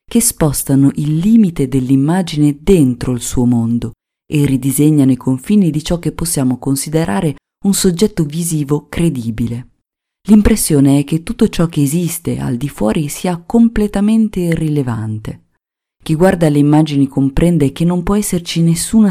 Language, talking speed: Italian, 140 wpm